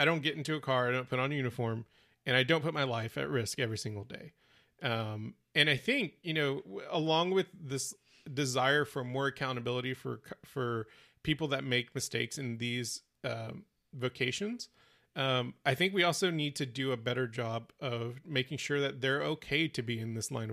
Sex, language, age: male, English, 30-49